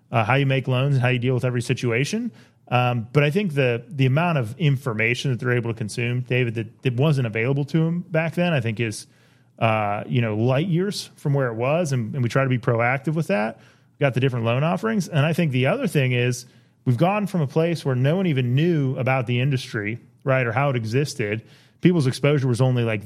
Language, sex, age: English, male, 30-49